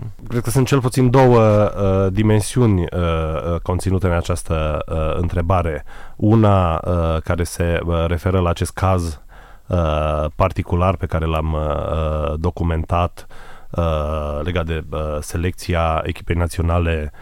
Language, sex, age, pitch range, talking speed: Romanian, male, 30-49, 80-95 Hz, 100 wpm